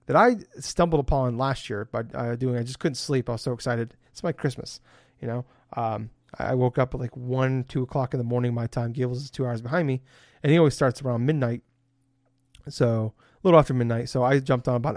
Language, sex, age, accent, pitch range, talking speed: English, male, 30-49, American, 120-140 Hz, 230 wpm